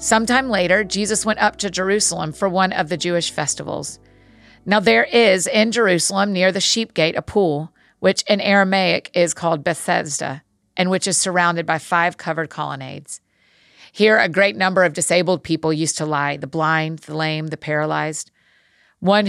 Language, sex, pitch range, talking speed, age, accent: English, female, 160-195 Hz, 170 wpm, 40-59, American